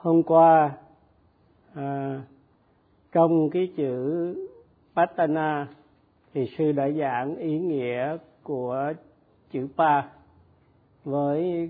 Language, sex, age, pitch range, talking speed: Vietnamese, male, 50-69, 140-170 Hz, 80 wpm